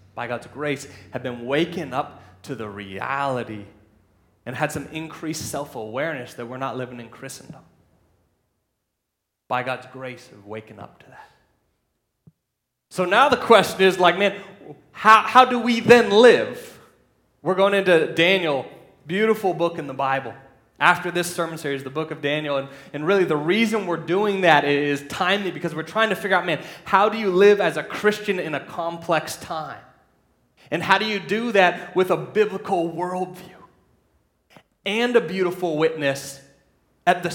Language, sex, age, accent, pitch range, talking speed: English, male, 30-49, American, 130-190 Hz, 165 wpm